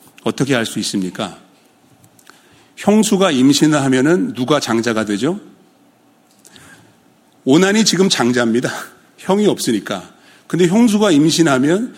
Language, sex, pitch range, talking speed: English, male, 115-185 Hz, 85 wpm